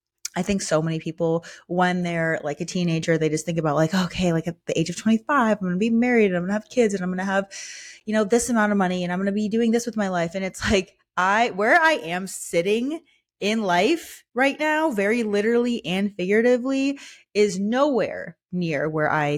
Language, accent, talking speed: English, American, 230 wpm